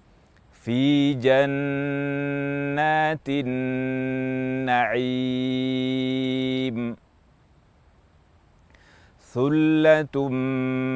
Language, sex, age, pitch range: Indonesian, male, 40-59, 110-140 Hz